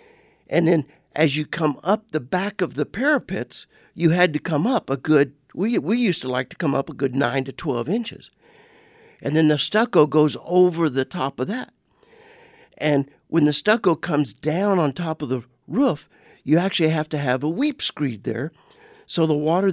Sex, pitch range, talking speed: male, 150-215 Hz, 200 wpm